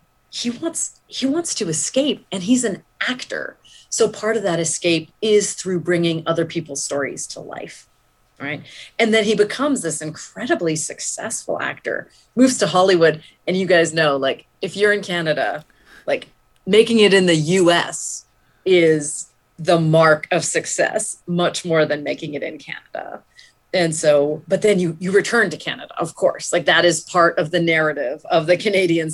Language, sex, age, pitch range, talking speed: English, female, 30-49, 155-205 Hz, 170 wpm